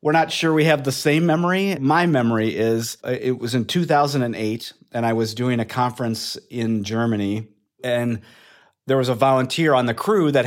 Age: 30-49